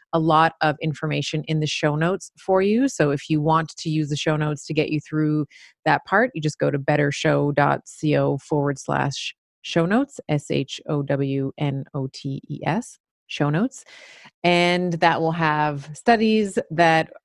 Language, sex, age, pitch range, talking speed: English, female, 30-49, 145-165 Hz, 175 wpm